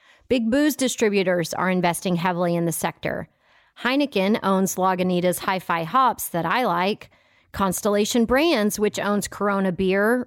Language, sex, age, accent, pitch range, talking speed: English, female, 30-49, American, 180-235 Hz, 135 wpm